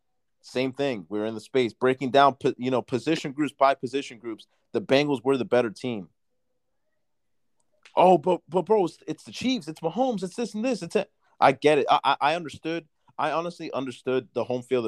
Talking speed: 200 wpm